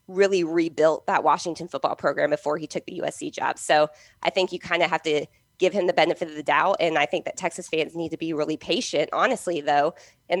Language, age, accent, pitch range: English, 20-39, American, 150-180 Hz